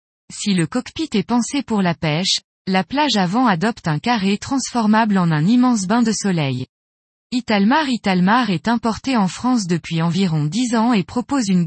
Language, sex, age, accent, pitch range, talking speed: French, female, 20-39, French, 175-240 Hz, 175 wpm